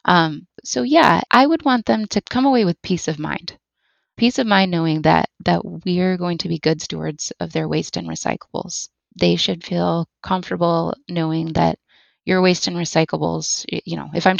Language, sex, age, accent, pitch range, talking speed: English, female, 20-39, American, 155-180 Hz, 190 wpm